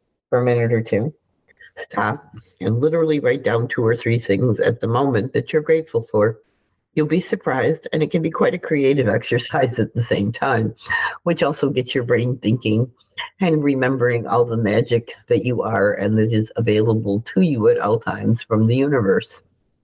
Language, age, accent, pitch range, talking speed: English, 60-79, American, 110-135 Hz, 190 wpm